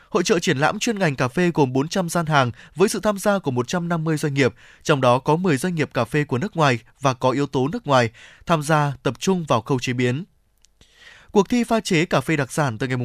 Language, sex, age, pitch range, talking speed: Vietnamese, male, 20-39, 135-185 Hz, 255 wpm